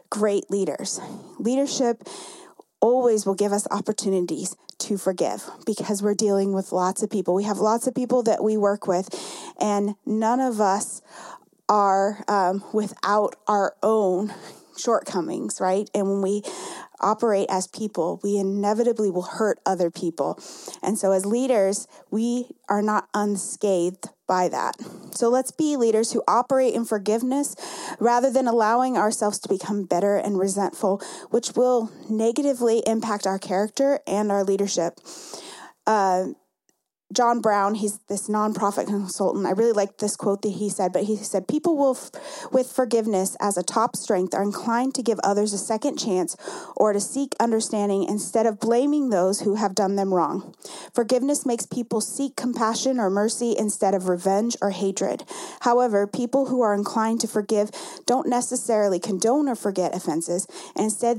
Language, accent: English, American